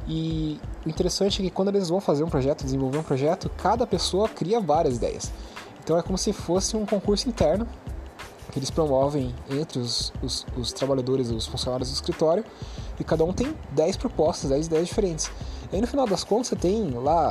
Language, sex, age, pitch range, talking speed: Portuguese, male, 20-39, 130-170 Hz, 200 wpm